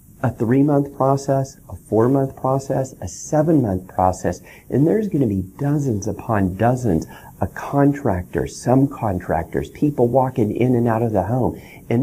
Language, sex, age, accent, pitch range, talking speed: English, male, 40-59, American, 95-135 Hz, 150 wpm